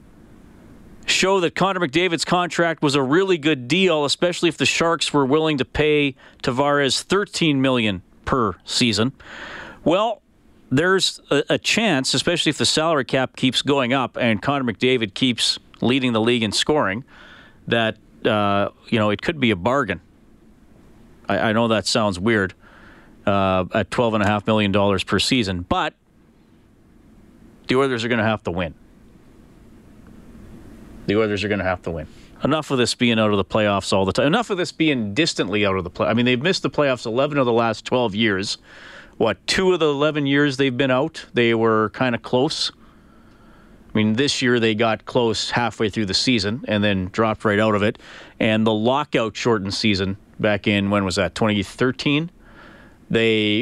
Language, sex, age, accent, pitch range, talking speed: English, male, 40-59, American, 105-140 Hz, 180 wpm